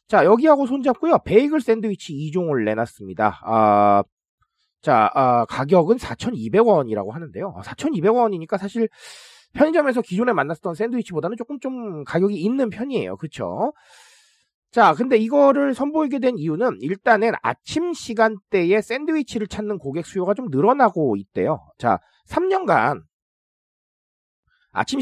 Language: Korean